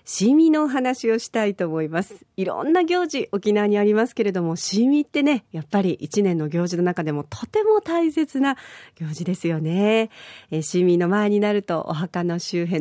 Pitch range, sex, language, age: 165-255 Hz, female, Japanese, 50-69